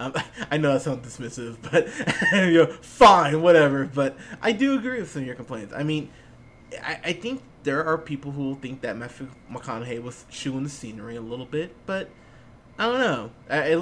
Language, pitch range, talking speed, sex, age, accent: English, 125-175 Hz, 195 wpm, male, 20-39, American